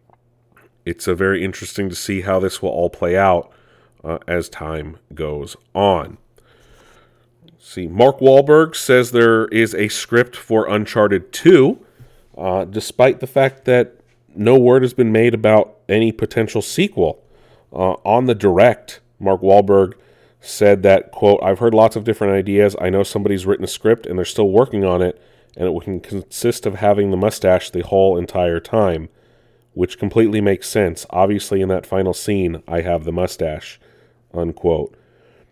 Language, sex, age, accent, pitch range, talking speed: English, male, 30-49, American, 95-120 Hz, 160 wpm